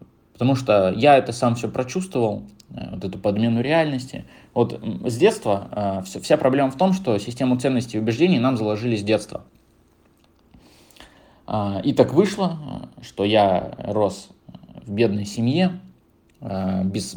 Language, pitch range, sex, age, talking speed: Russian, 100-125 Hz, male, 20-39, 130 wpm